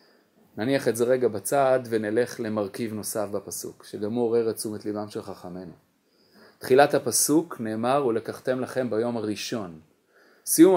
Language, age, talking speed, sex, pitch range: Hebrew, 30-49, 145 wpm, male, 110-155 Hz